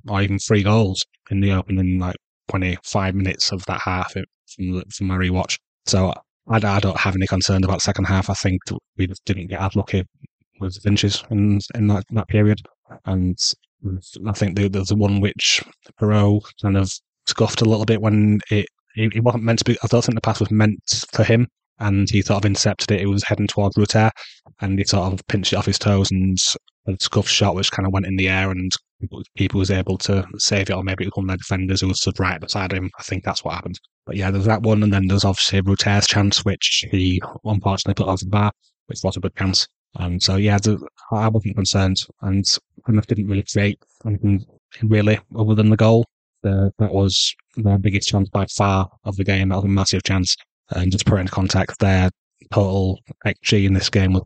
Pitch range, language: 95-105 Hz, English